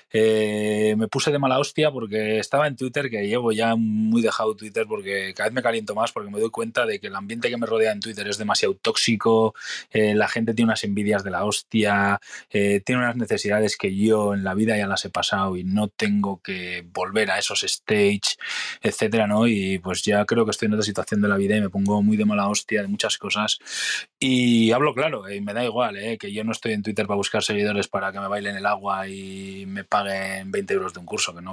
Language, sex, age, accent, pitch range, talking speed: Spanish, male, 20-39, Spanish, 100-130 Hz, 240 wpm